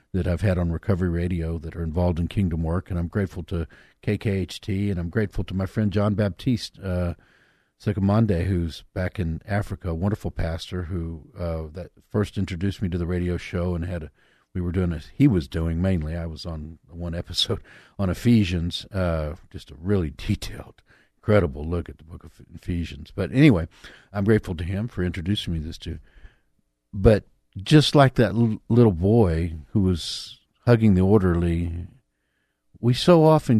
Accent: American